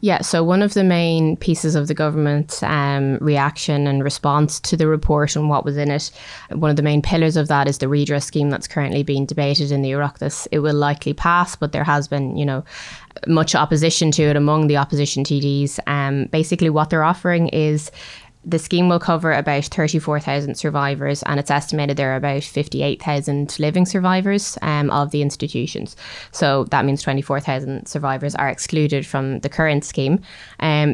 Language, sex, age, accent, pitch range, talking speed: English, female, 20-39, Irish, 140-155 Hz, 185 wpm